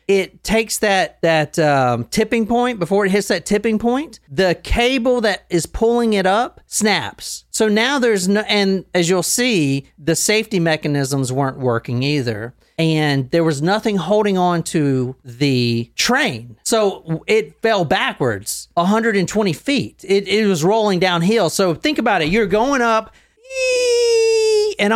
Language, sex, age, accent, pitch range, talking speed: English, male, 40-59, American, 165-225 Hz, 155 wpm